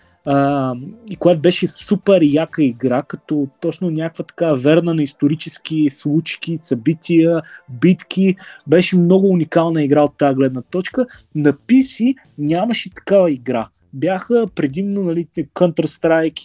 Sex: male